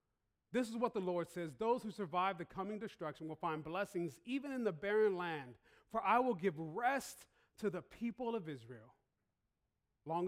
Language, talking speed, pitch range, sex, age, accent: English, 180 wpm, 140-200 Hz, male, 30-49, American